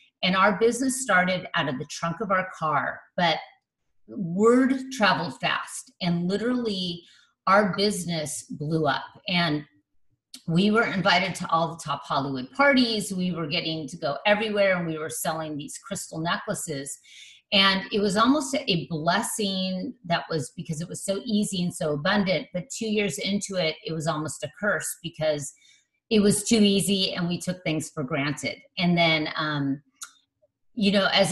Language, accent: English, American